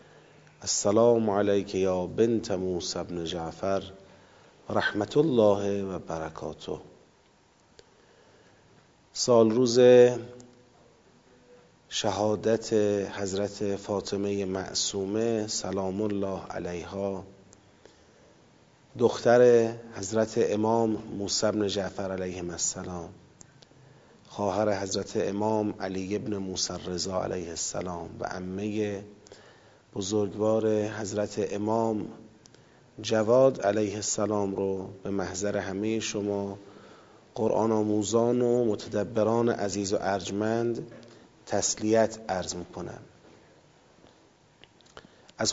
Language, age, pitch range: Persian, 40-59, 100-115 Hz